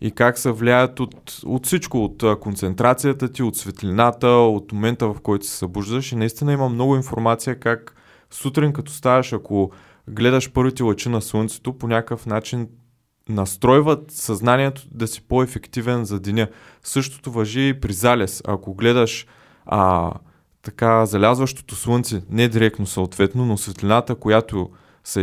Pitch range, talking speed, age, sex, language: 100-120 Hz, 145 wpm, 20-39, male, Bulgarian